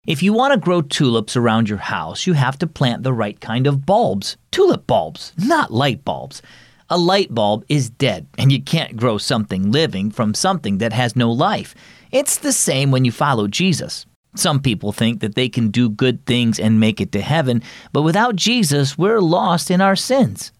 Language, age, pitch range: English, 40-59, 115-165 Hz